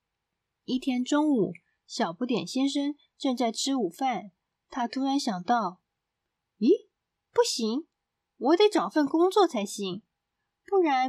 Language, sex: Chinese, female